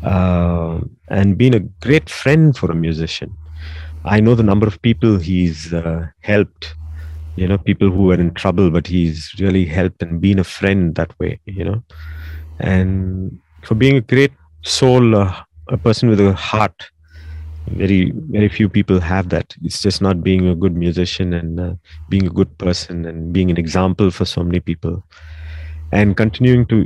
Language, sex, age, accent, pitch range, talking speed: English, male, 30-49, Indian, 80-100 Hz, 175 wpm